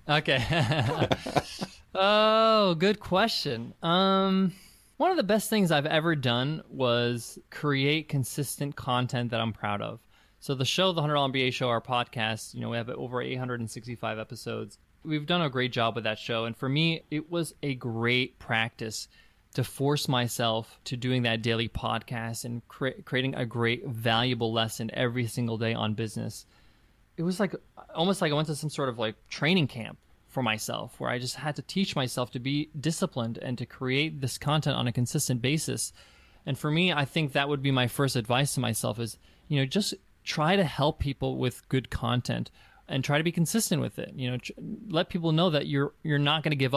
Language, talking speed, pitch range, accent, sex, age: English, 195 wpm, 120-150 Hz, American, male, 20-39